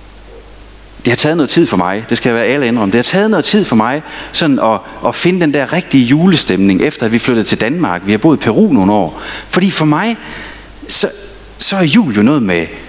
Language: Danish